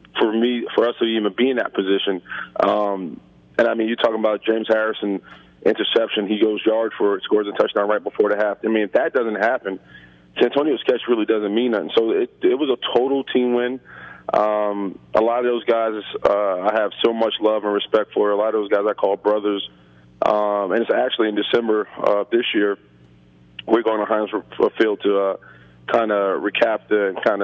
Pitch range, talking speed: 100-115 Hz, 215 wpm